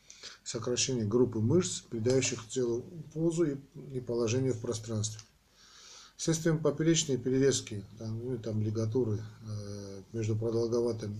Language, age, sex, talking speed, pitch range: Russian, 40-59, male, 100 wpm, 110-130 Hz